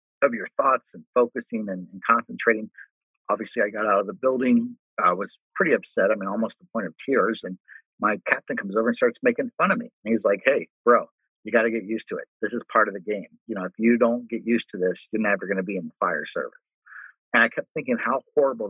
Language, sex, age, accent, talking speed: English, male, 50-69, American, 250 wpm